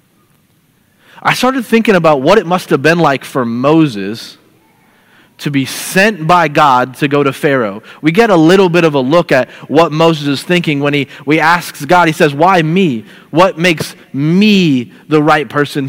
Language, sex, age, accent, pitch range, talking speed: English, male, 30-49, American, 140-185 Hz, 185 wpm